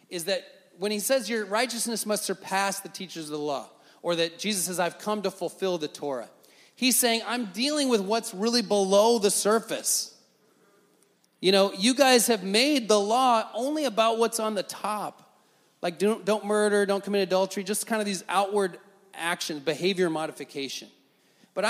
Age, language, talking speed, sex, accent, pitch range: 30-49, English, 175 wpm, male, American, 175-225 Hz